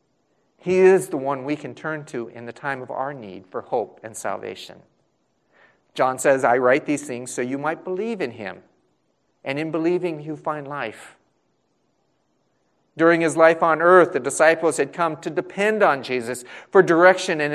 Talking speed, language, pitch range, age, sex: 180 wpm, English, 145-195 Hz, 40-59, male